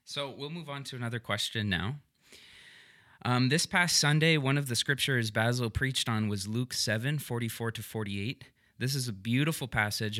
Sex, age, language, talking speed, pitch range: male, 20-39, English, 175 wpm, 100-130 Hz